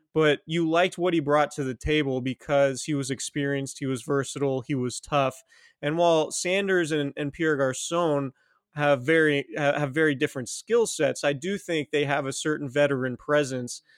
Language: English